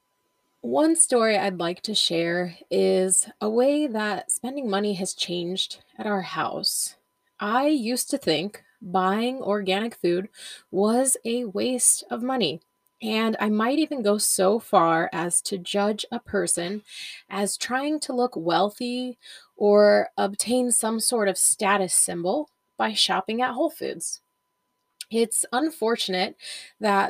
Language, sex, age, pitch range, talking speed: English, female, 20-39, 195-250 Hz, 135 wpm